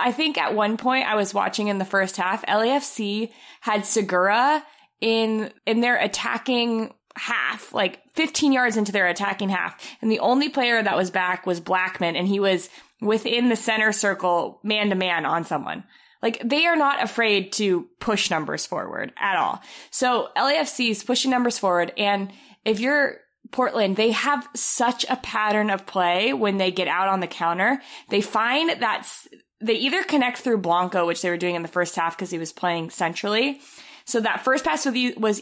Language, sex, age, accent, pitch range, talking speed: English, female, 20-39, American, 195-245 Hz, 185 wpm